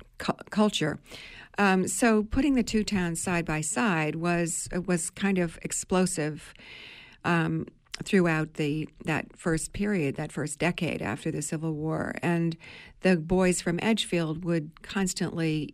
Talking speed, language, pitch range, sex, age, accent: 135 wpm, English, 165-195 Hz, female, 50-69, American